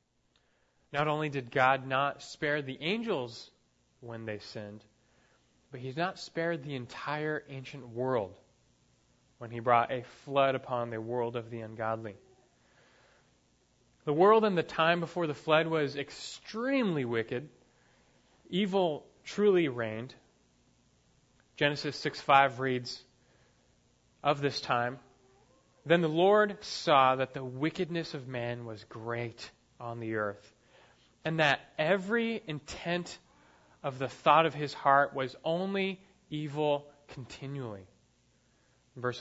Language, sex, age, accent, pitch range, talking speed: English, male, 30-49, American, 115-150 Hz, 120 wpm